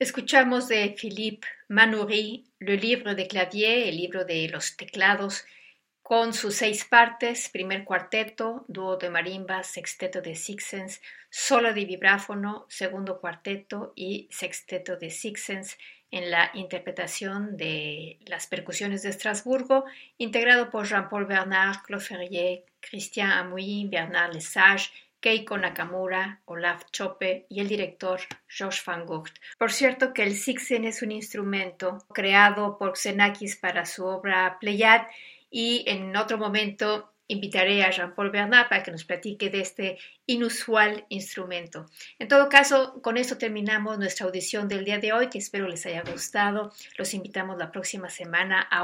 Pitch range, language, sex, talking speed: 185-220 Hz, Spanish, female, 145 wpm